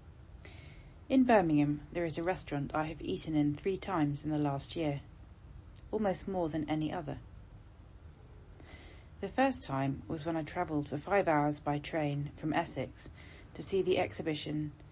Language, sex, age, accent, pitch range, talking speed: English, female, 30-49, British, 135-160 Hz, 155 wpm